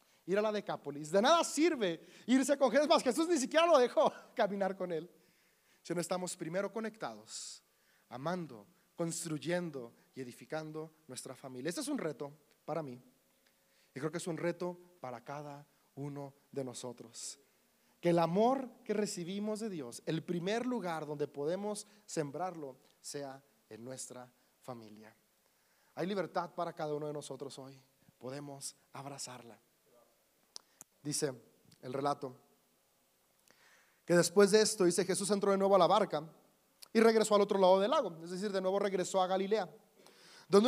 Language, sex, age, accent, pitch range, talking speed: Spanish, male, 30-49, Mexican, 155-225 Hz, 150 wpm